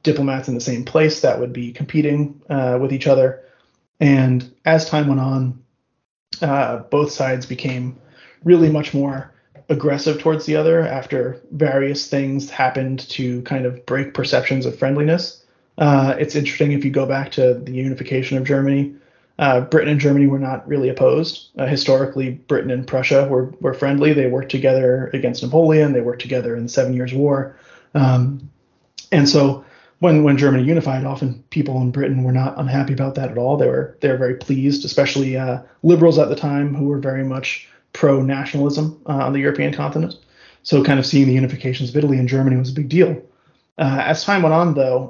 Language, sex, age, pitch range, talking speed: English, male, 30-49, 130-150 Hz, 190 wpm